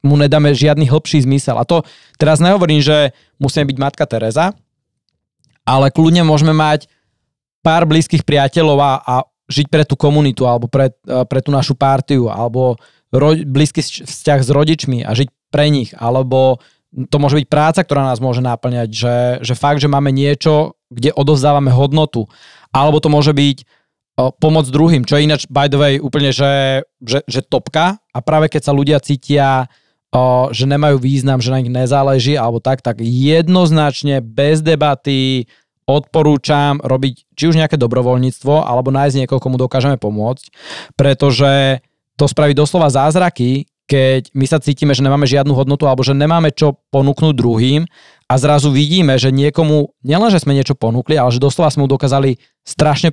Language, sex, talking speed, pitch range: Slovak, male, 160 wpm, 130-150 Hz